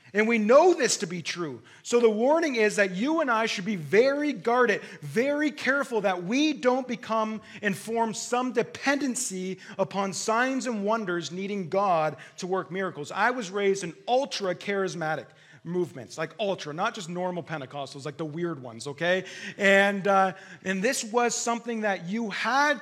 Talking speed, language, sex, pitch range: 170 wpm, English, male, 155-225 Hz